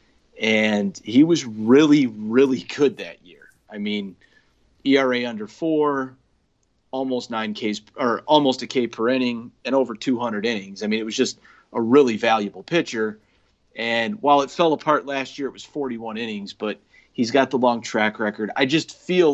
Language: English